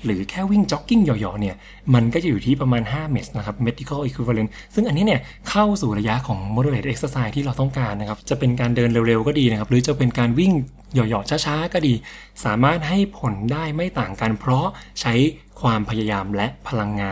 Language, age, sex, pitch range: English, 20-39, male, 110-145 Hz